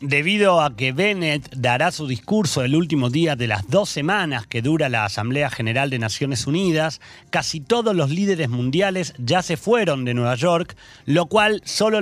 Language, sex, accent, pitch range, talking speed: Spanish, male, Argentinian, 130-180 Hz, 180 wpm